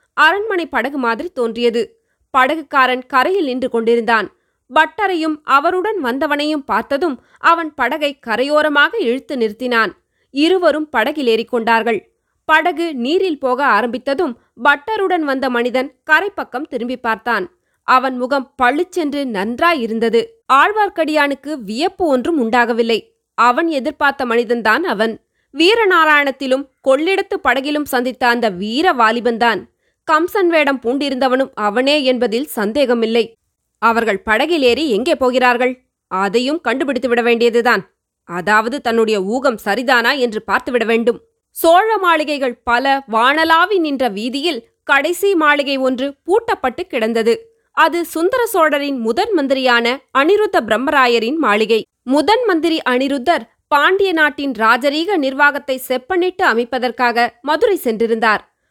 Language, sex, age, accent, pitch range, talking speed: Tamil, female, 20-39, native, 240-320 Hz, 100 wpm